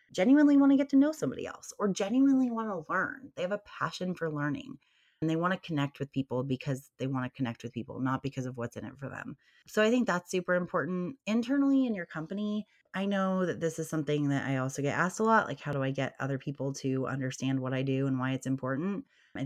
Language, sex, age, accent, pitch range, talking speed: English, female, 20-39, American, 135-195 Hz, 250 wpm